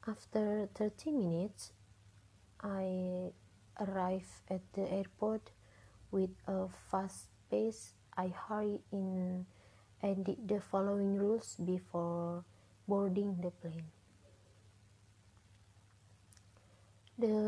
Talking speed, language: 85 wpm, English